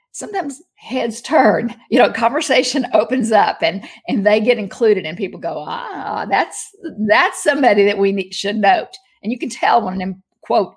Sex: female